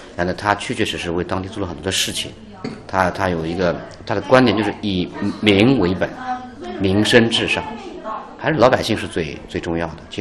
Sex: male